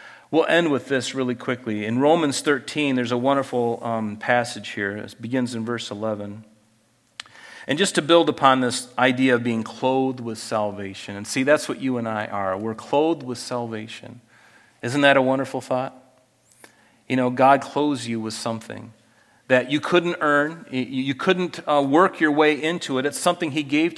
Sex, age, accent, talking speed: male, 40-59, American, 180 wpm